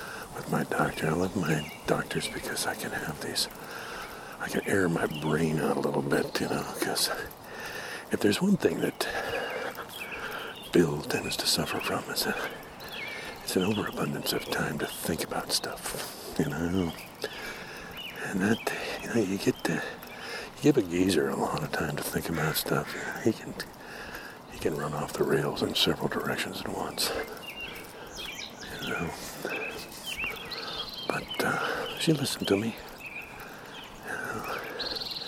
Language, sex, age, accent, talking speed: English, male, 60-79, American, 145 wpm